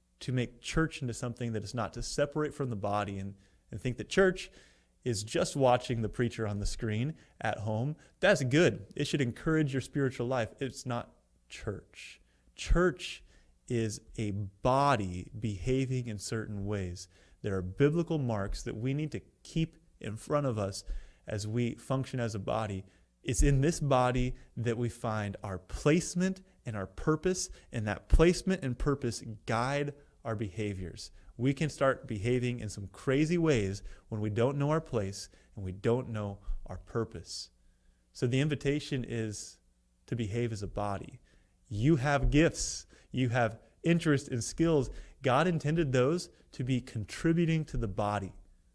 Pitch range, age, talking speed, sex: 100-135 Hz, 30-49, 160 wpm, male